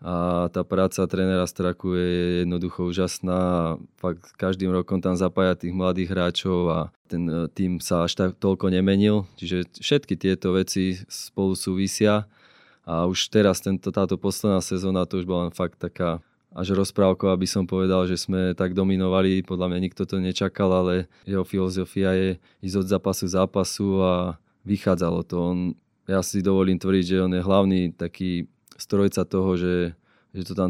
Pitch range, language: 90-95 Hz, Slovak